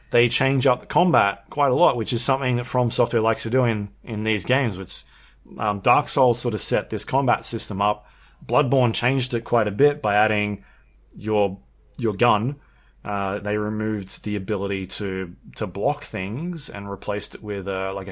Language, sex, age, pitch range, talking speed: English, male, 20-39, 105-125 Hz, 190 wpm